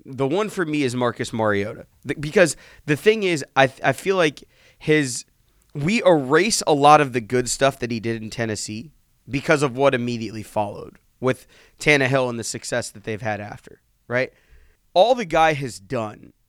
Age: 30-49